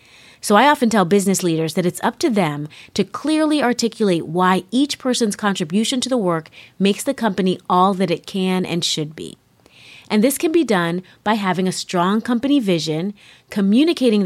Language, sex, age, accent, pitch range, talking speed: English, female, 30-49, American, 170-235 Hz, 180 wpm